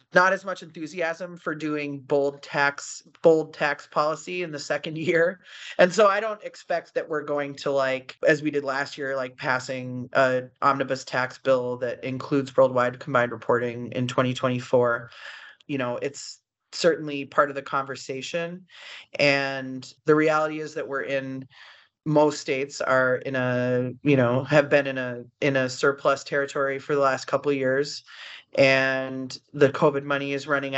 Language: English